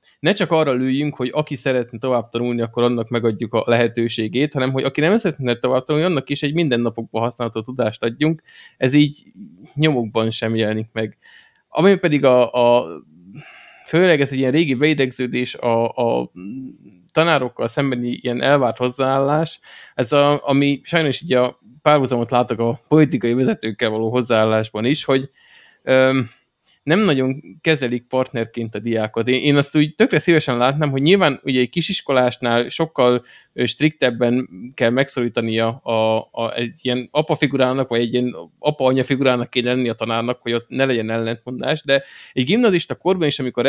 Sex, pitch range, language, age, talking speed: male, 120-145 Hz, Hungarian, 20-39, 155 wpm